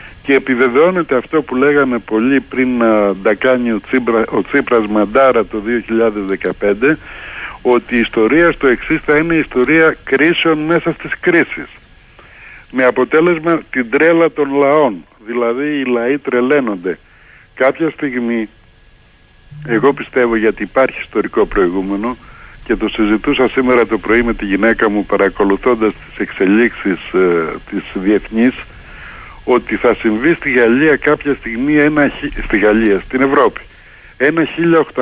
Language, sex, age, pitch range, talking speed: Greek, male, 60-79, 110-145 Hz, 130 wpm